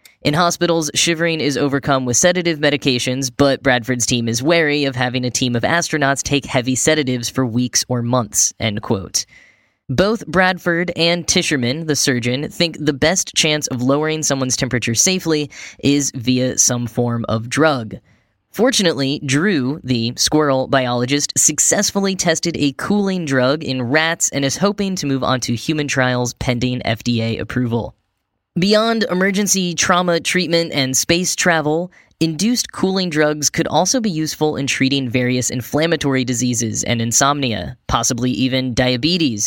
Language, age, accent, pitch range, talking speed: English, 10-29, American, 125-160 Hz, 145 wpm